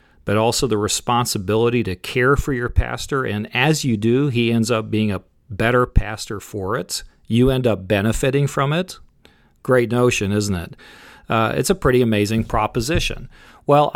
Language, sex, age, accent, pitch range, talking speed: English, male, 40-59, American, 100-125 Hz, 170 wpm